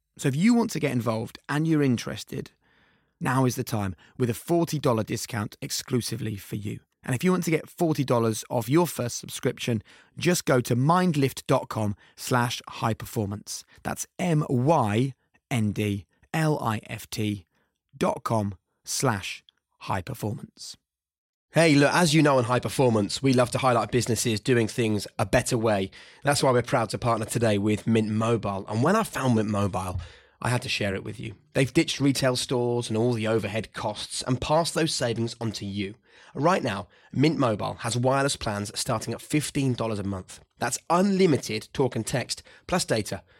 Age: 30-49